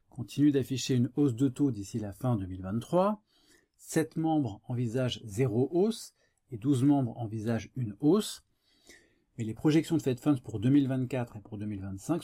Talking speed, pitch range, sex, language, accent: 150 wpm, 110-145 Hz, male, French, French